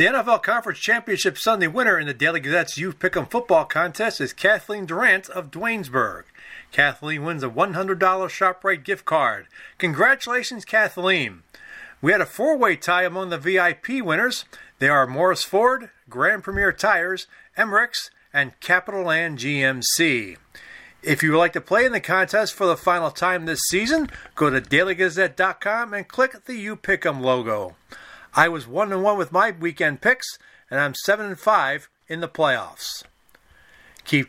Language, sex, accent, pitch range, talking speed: English, male, American, 150-200 Hz, 155 wpm